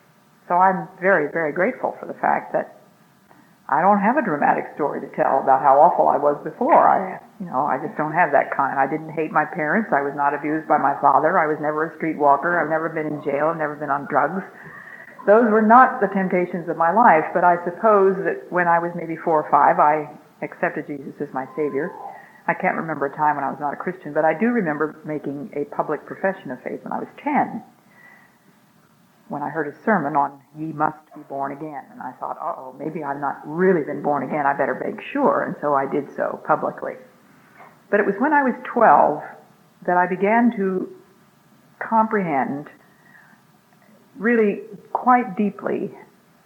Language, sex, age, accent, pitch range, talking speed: English, female, 50-69, American, 150-195 Hz, 205 wpm